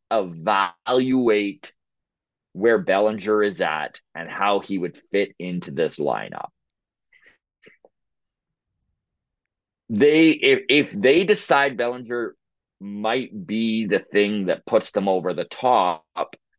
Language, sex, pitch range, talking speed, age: English, male, 95-130 Hz, 105 wpm, 30-49